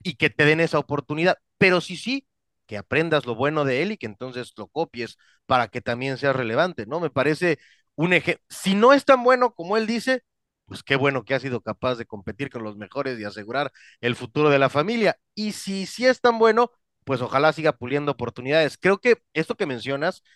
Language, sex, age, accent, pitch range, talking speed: Spanish, male, 40-59, Mexican, 125-180 Hz, 215 wpm